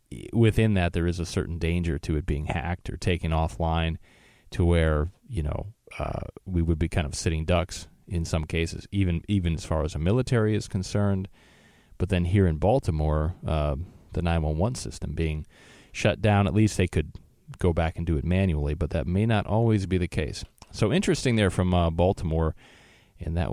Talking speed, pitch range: 195 wpm, 85-100 Hz